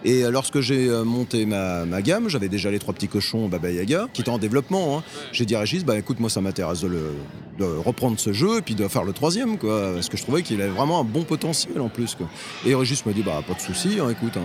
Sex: male